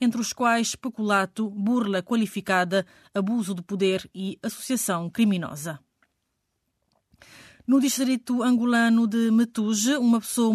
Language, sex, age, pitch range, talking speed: Portuguese, female, 20-39, 195-230 Hz, 110 wpm